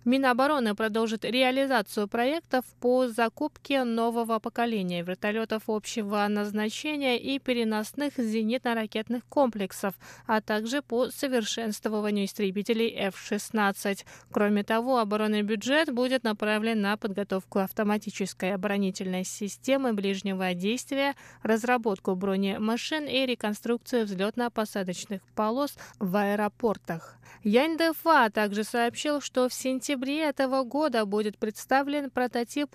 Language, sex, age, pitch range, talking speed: Russian, female, 20-39, 205-250 Hz, 95 wpm